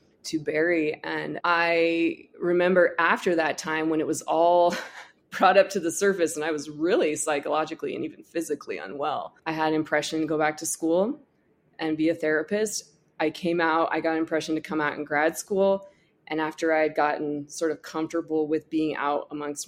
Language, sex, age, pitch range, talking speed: English, female, 20-39, 155-180 Hz, 195 wpm